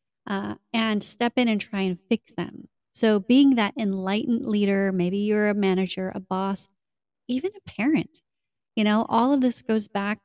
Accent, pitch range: American, 200-245 Hz